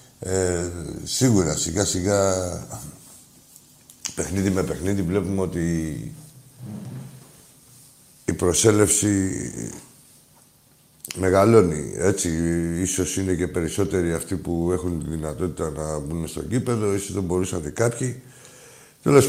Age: 60-79